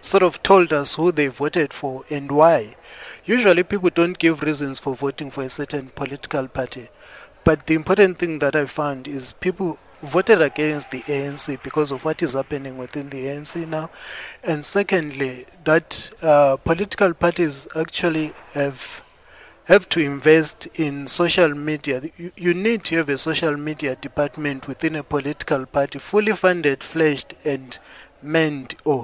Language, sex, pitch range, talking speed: English, male, 140-170 Hz, 160 wpm